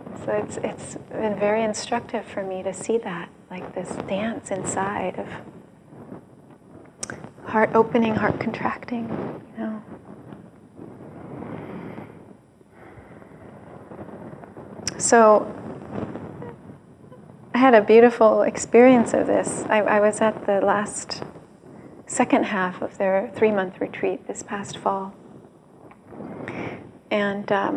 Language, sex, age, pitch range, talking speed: English, female, 30-49, 195-225 Hz, 100 wpm